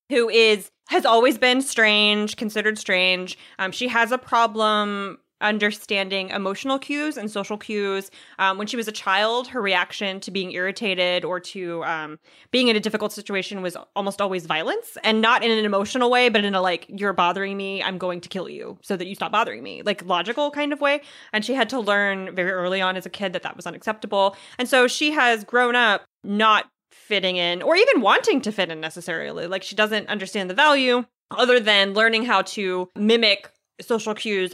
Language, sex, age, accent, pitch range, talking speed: English, female, 20-39, American, 190-230 Hz, 200 wpm